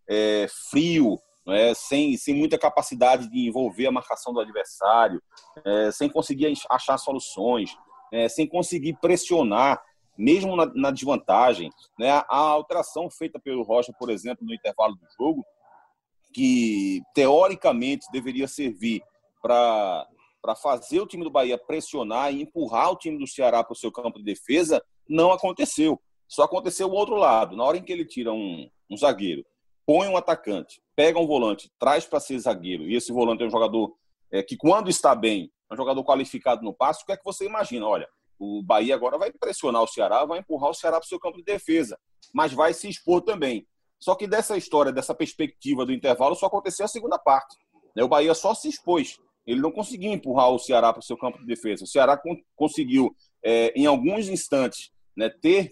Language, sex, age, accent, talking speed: Portuguese, male, 30-49, Brazilian, 180 wpm